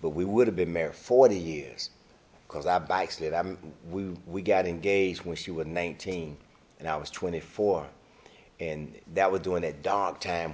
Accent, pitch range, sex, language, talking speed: American, 80-105 Hz, male, English, 175 wpm